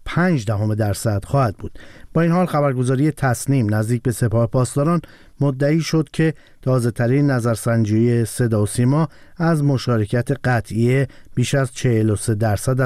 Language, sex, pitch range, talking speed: Persian, male, 120-145 Hz, 140 wpm